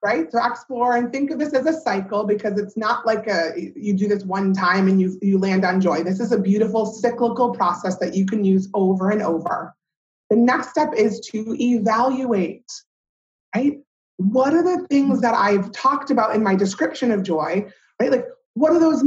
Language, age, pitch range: English, 30-49, 195-245 Hz